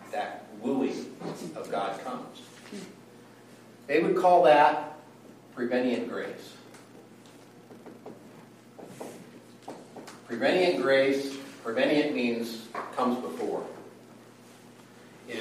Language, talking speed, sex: English, 70 wpm, male